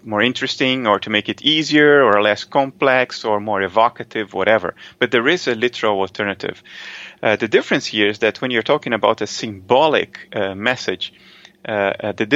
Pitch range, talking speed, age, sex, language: 110-150 Hz, 175 wpm, 30-49, male, English